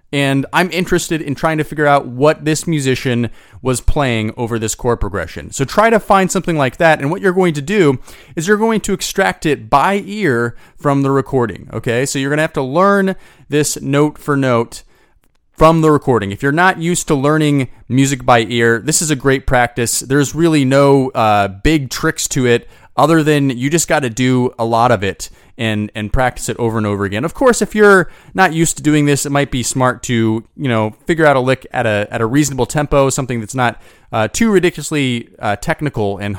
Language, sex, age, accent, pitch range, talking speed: English, male, 30-49, American, 120-160 Hz, 220 wpm